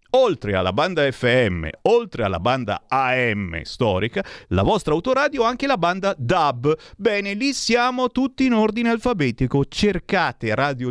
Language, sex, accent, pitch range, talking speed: Italian, male, native, 115-185 Hz, 145 wpm